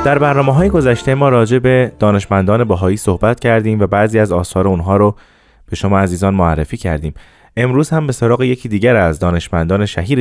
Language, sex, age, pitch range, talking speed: Persian, male, 20-39, 95-125 Hz, 180 wpm